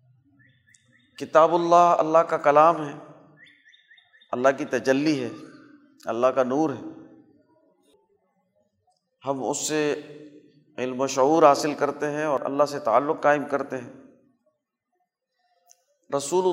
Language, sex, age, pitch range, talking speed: Urdu, male, 40-59, 140-200 Hz, 115 wpm